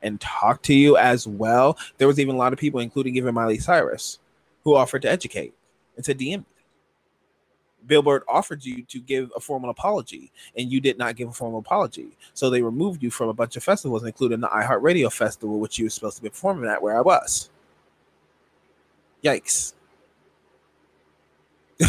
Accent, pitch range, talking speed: American, 100-130 Hz, 180 wpm